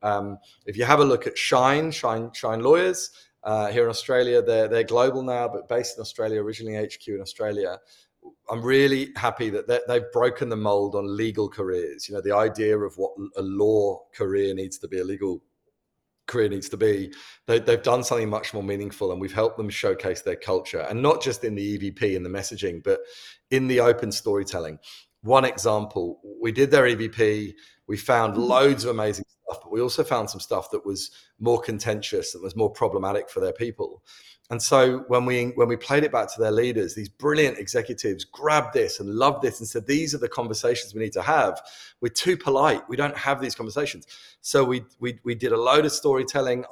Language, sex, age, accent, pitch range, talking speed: English, male, 30-49, British, 105-150 Hz, 205 wpm